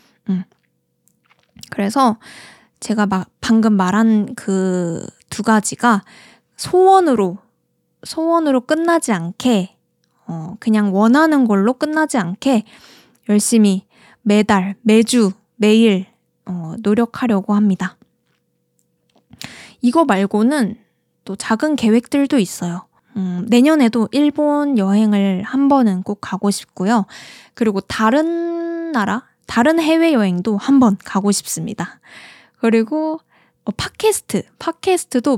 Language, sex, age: Korean, female, 20-39